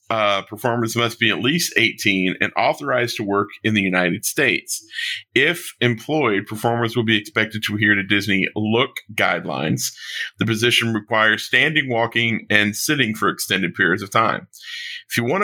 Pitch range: 100-120 Hz